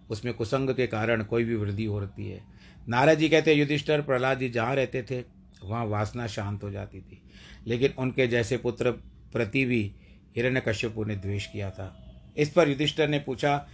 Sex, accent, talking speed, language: male, native, 180 wpm, Hindi